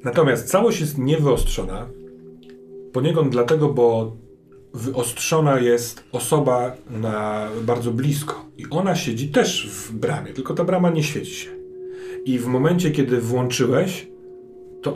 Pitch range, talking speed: 115-145 Hz, 125 wpm